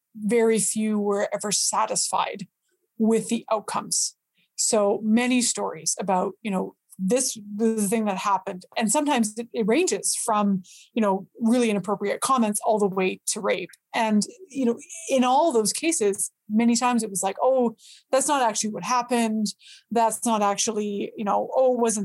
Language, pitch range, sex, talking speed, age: English, 205-250 Hz, female, 160 wpm, 20-39